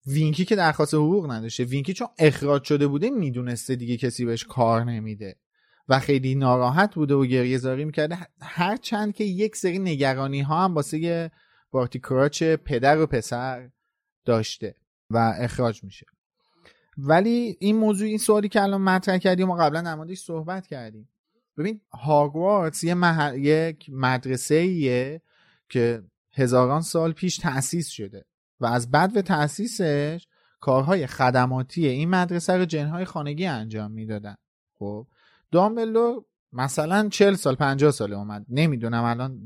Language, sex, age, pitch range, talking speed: Persian, male, 30-49, 125-180 Hz, 135 wpm